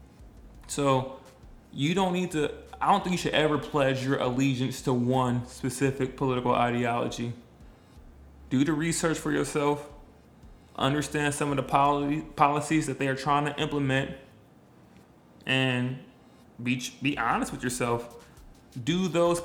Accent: American